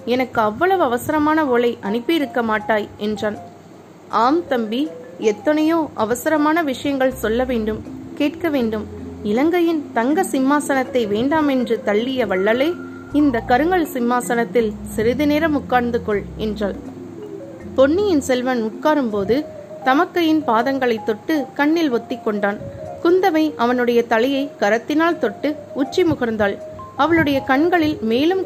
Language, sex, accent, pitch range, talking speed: Tamil, female, native, 225-300 Hz, 95 wpm